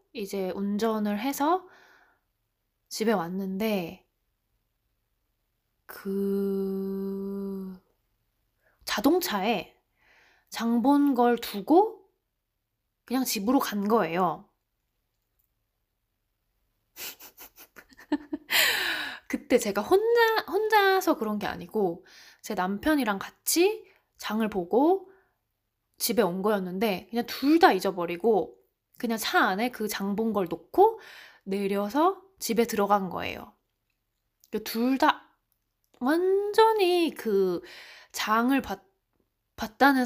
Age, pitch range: 20-39, 190-280 Hz